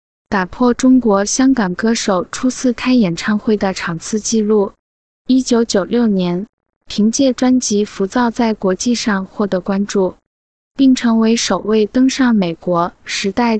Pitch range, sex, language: 200-245 Hz, female, Chinese